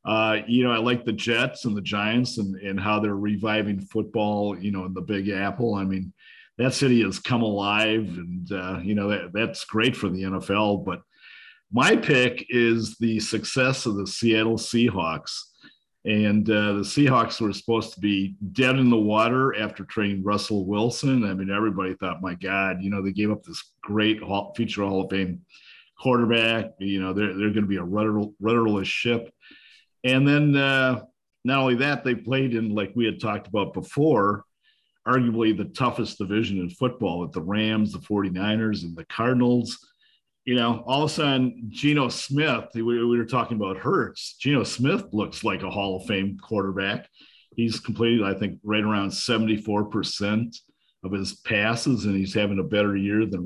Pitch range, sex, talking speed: 100-120 Hz, male, 185 wpm